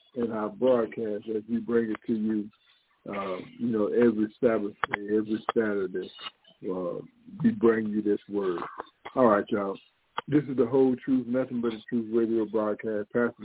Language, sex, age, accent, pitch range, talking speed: English, male, 50-69, American, 110-140 Hz, 165 wpm